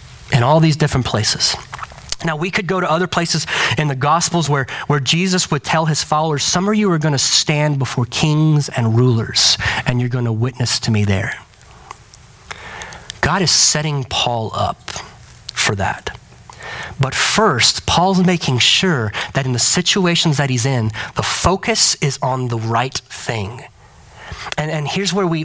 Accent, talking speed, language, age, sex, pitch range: American, 165 wpm, English, 30-49, male, 130-165 Hz